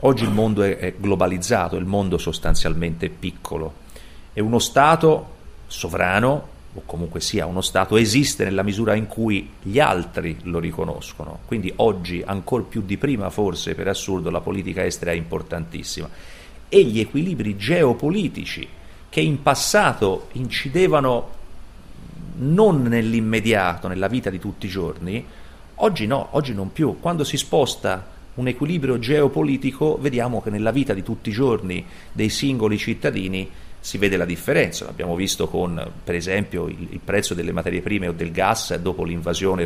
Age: 40-59